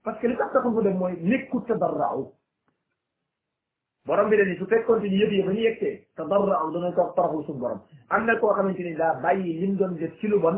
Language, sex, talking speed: French, male, 90 wpm